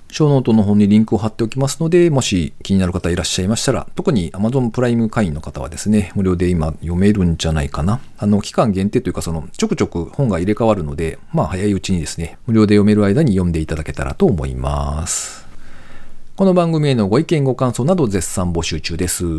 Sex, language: male, Japanese